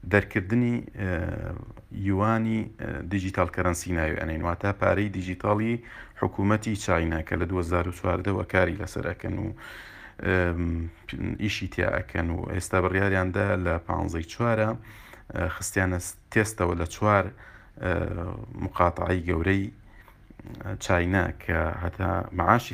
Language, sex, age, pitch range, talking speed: English, male, 40-59, 90-110 Hz, 70 wpm